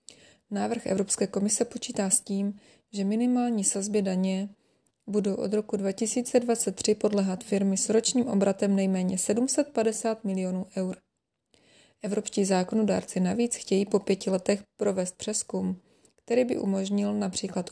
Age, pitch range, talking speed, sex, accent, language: 20-39, 195-220 Hz, 120 wpm, female, native, Czech